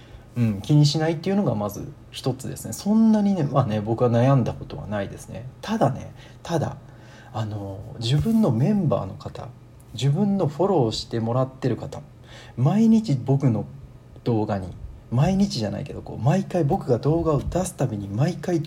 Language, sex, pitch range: Japanese, male, 110-155 Hz